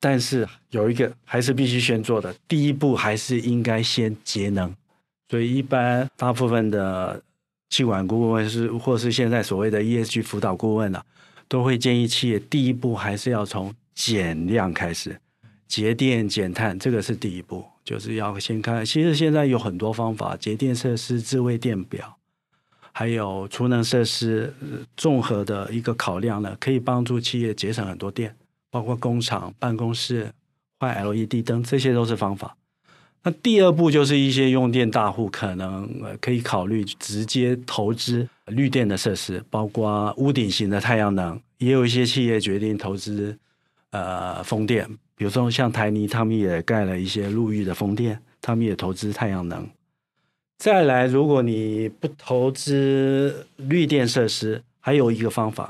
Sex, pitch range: male, 105-125 Hz